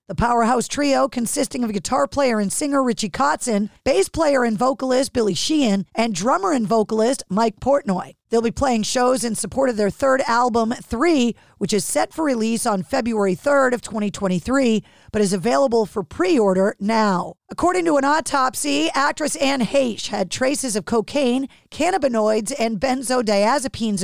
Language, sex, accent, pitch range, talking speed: English, female, American, 220-275 Hz, 160 wpm